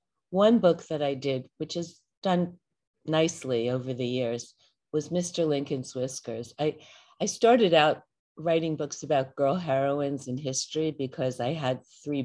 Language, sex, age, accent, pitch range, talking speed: English, female, 50-69, American, 130-165 Hz, 150 wpm